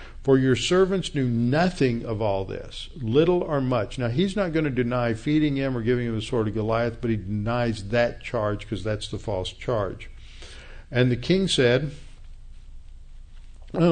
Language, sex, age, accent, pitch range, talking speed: English, male, 50-69, American, 110-140 Hz, 175 wpm